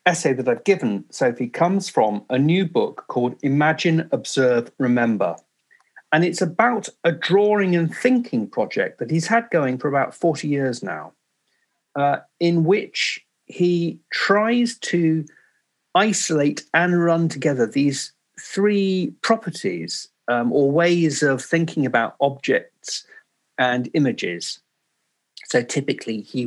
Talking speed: 125 wpm